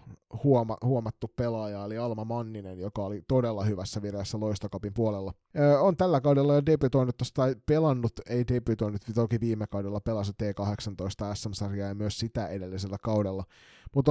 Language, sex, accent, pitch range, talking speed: Finnish, male, native, 105-125 Hz, 145 wpm